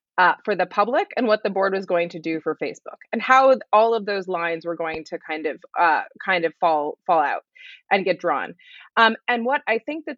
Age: 20-39